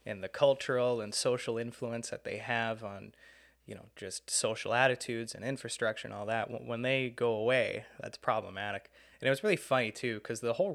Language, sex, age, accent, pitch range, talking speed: English, male, 20-39, American, 115-140 Hz, 195 wpm